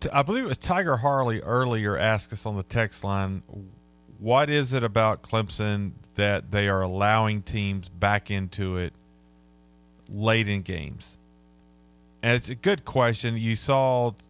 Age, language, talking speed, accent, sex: 40-59, English, 150 wpm, American, male